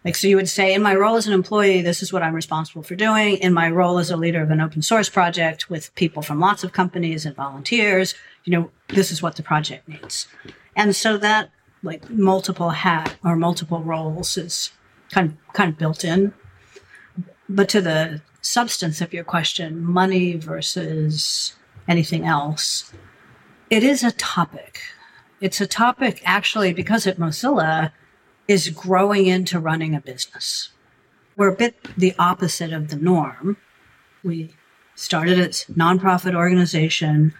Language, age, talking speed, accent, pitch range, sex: English, 50-69, 165 wpm, American, 160-190 Hz, female